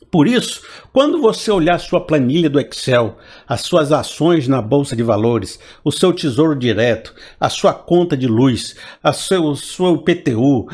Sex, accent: male, Brazilian